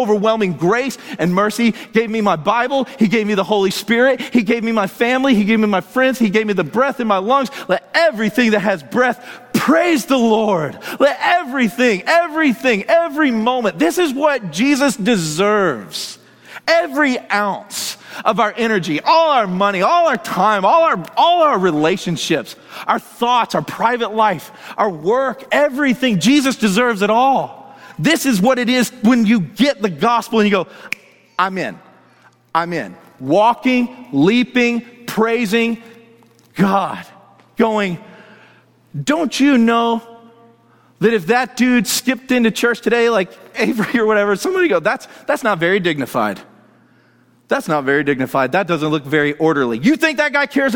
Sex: male